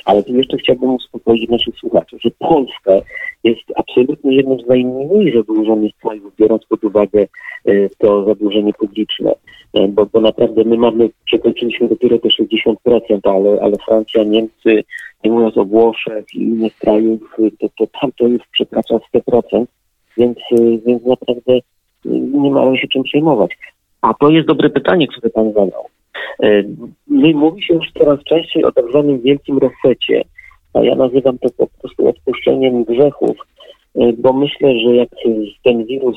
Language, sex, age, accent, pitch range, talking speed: Polish, male, 40-59, native, 110-130 Hz, 155 wpm